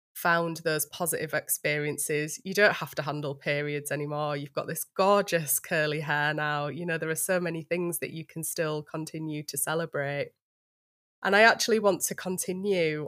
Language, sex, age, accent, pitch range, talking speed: English, female, 20-39, British, 155-175 Hz, 175 wpm